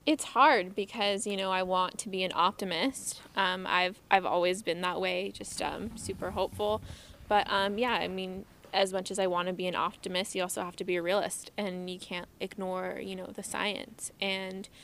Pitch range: 180-200 Hz